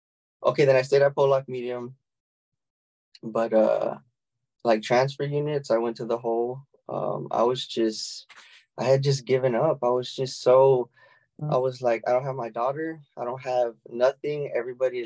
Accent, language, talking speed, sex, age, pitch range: American, English, 170 wpm, male, 20-39, 115-135 Hz